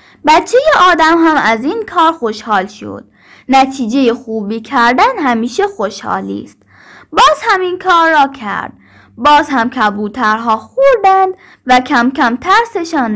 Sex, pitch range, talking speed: female, 225-340 Hz, 125 wpm